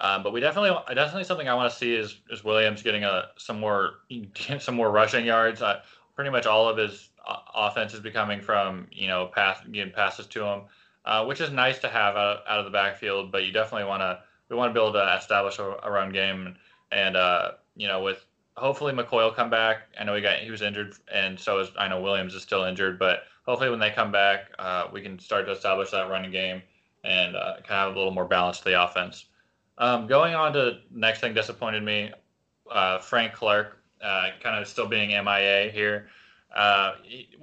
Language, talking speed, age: English, 220 wpm, 20-39